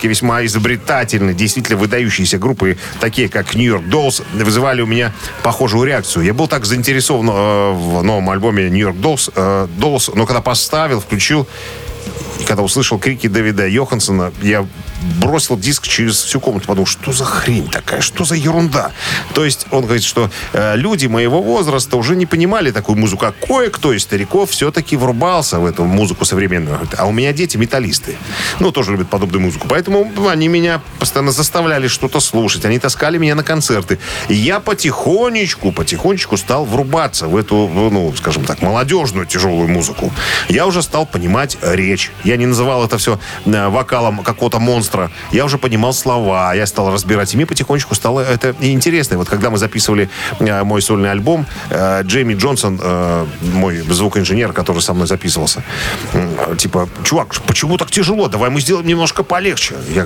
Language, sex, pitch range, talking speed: Russian, male, 100-135 Hz, 165 wpm